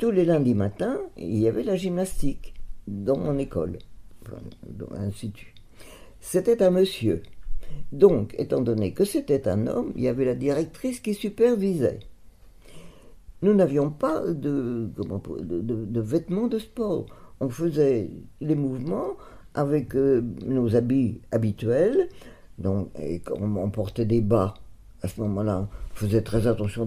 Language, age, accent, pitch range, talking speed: French, 50-69, French, 105-145 Hz, 145 wpm